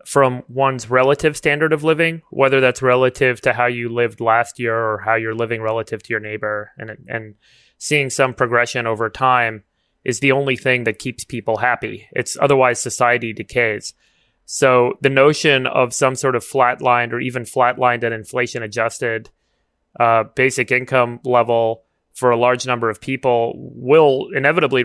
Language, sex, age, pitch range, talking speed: English, male, 30-49, 115-130 Hz, 165 wpm